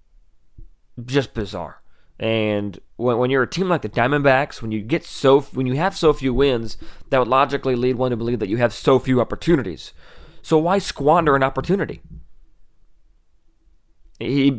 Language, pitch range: English, 110-140 Hz